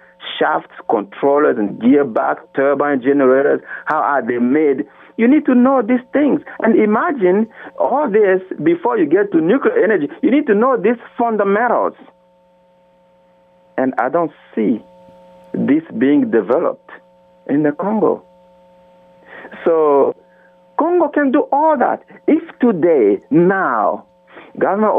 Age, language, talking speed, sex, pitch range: 50-69, English, 125 wpm, male, 145-245 Hz